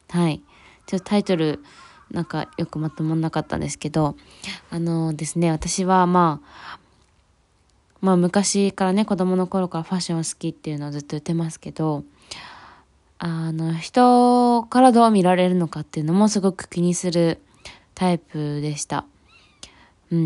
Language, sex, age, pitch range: Japanese, female, 20-39, 155-200 Hz